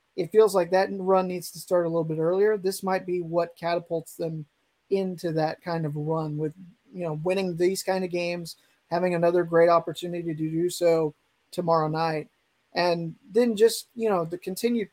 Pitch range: 165-190 Hz